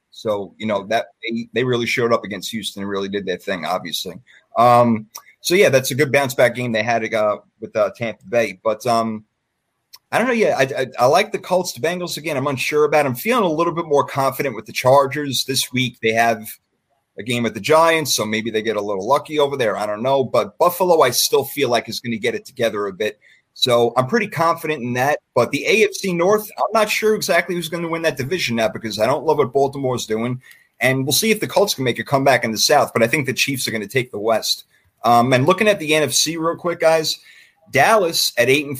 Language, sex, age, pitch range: English, male, 30-49, 115-155 Hz